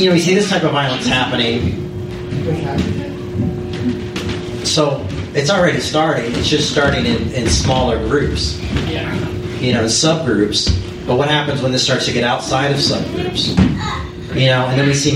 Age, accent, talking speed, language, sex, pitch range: 40-59, American, 165 wpm, English, male, 120-150 Hz